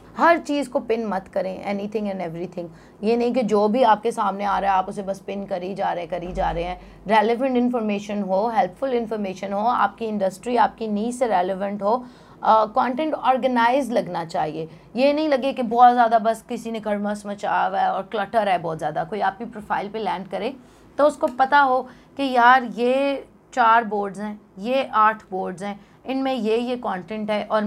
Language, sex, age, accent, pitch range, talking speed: English, female, 30-49, Indian, 195-240 Hz, 125 wpm